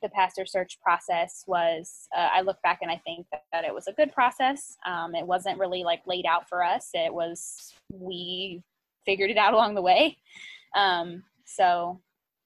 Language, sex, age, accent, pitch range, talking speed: English, female, 10-29, American, 180-200 Hz, 190 wpm